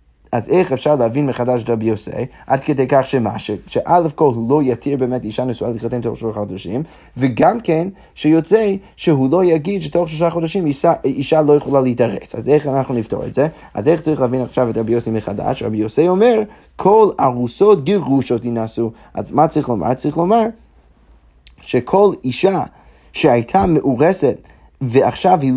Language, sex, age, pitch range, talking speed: Hebrew, male, 30-49, 120-155 Hz, 175 wpm